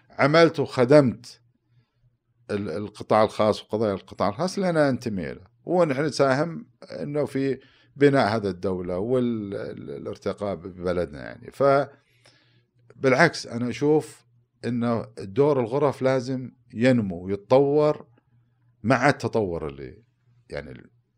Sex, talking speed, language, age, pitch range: male, 95 wpm, Arabic, 50-69, 105-140 Hz